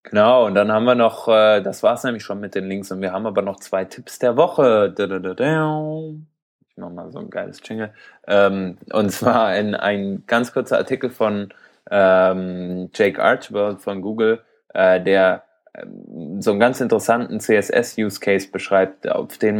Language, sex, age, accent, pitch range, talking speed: German, male, 20-39, German, 95-110 Hz, 155 wpm